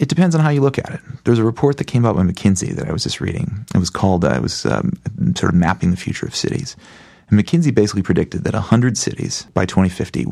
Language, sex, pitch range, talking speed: English, male, 85-110 Hz, 250 wpm